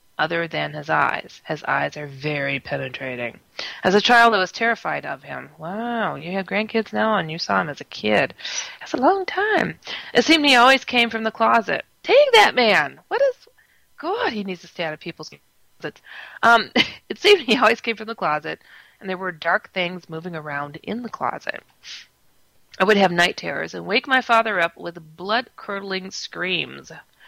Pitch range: 155-230 Hz